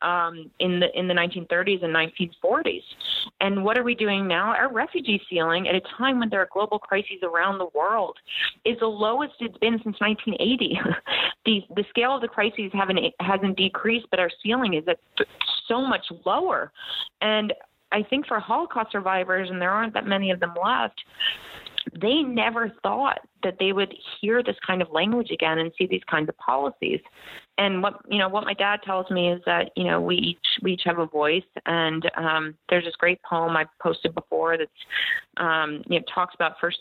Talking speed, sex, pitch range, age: 195 wpm, female, 160-205 Hz, 30-49